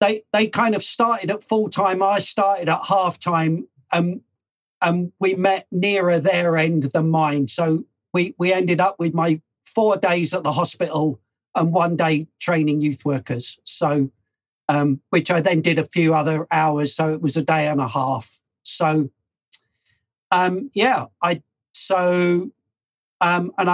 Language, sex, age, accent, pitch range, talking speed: English, male, 50-69, British, 150-185 Hz, 165 wpm